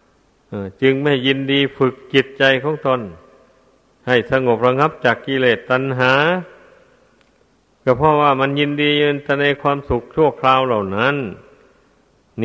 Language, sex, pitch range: Thai, male, 130-145 Hz